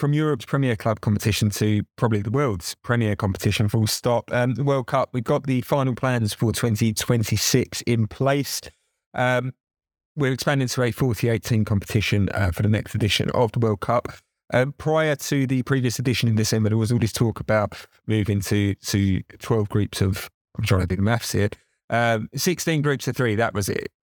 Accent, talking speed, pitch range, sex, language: British, 195 wpm, 105-130 Hz, male, English